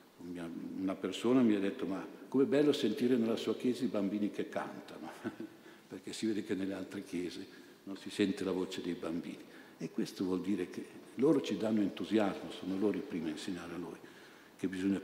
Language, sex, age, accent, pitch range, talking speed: Italian, male, 60-79, native, 95-120 Hz, 195 wpm